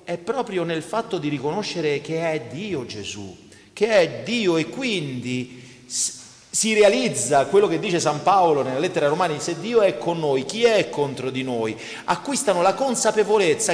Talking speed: 165 wpm